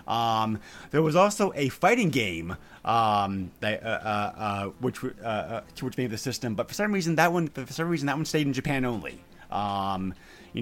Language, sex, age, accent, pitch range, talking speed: English, male, 30-49, American, 105-140 Hz, 210 wpm